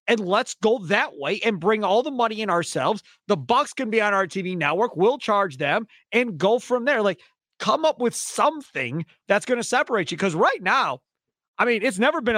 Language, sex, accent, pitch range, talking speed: English, male, American, 160-220 Hz, 220 wpm